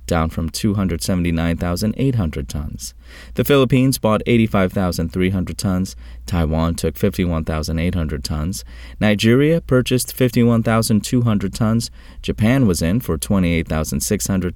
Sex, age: male, 30-49